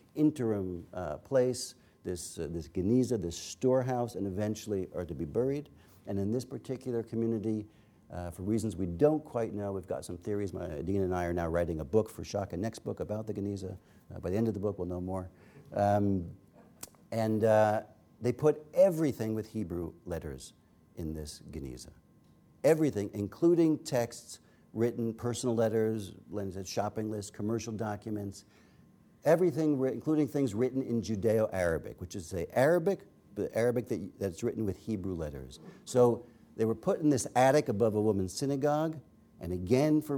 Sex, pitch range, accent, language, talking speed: male, 95-125 Hz, American, English, 165 wpm